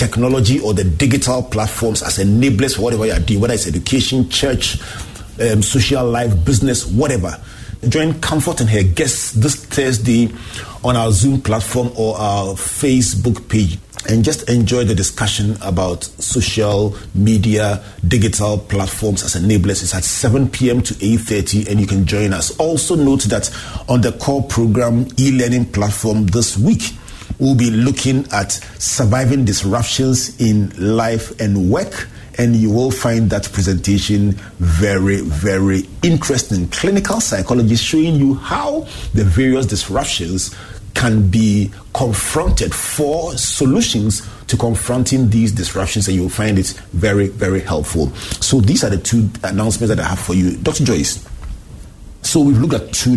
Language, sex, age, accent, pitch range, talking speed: English, male, 30-49, Nigerian, 100-125 Hz, 150 wpm